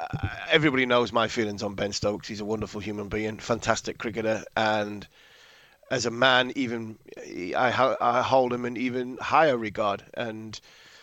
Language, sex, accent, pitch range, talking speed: English, male, British, 110-130 Hz, 145 wpm